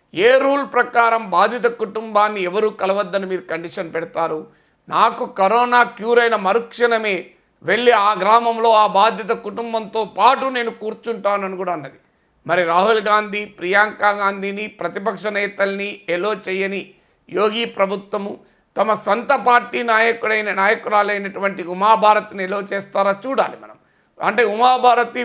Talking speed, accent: 115 wpm, native